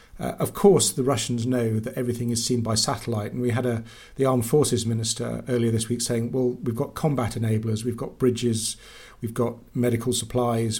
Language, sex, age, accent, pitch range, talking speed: English, male, 40-59, British, 115-135 Hz, 200 wpm